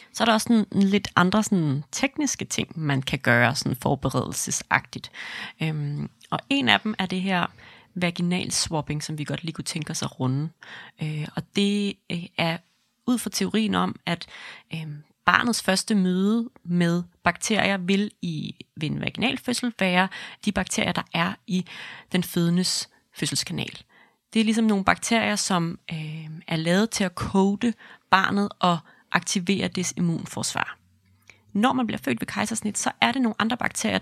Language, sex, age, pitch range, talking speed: Danish, female, 30-49, 170-210 Hz, 165 wpm